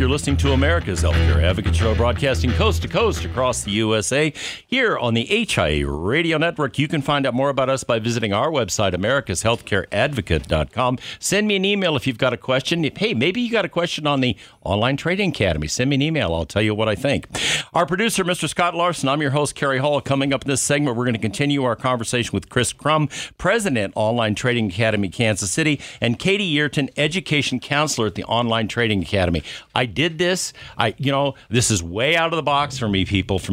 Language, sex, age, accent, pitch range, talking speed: English, male, 50-69, American, 100-140 Hz, 215 wpm